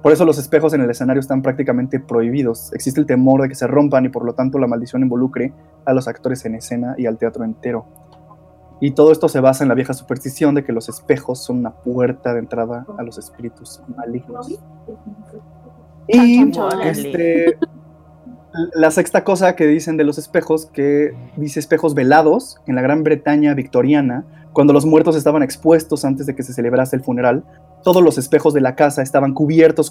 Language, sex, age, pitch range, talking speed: Spanish, male, 20-39, 130-155 Hz, 185 wpm